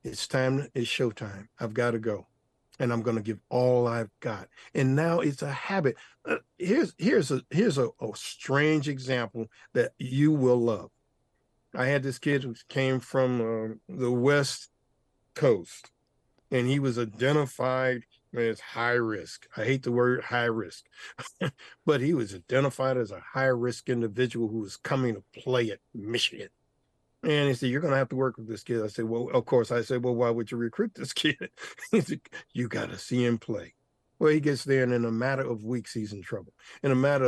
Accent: American